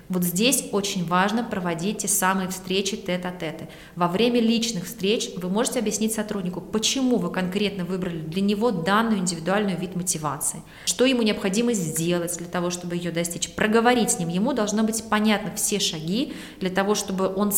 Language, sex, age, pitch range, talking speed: Russian, female, 20-39, 180-225 Hz, 170 wpm